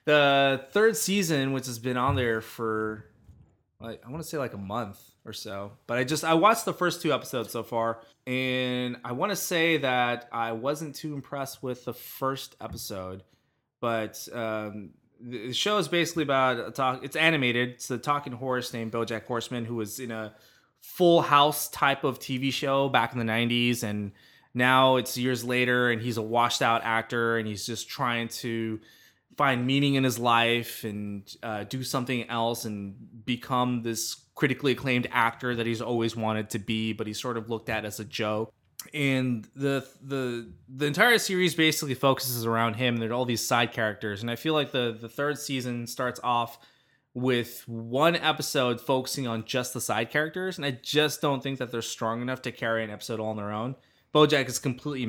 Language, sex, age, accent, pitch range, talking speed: English, male, 20-39, American, 115-135 Hz, 195 wpm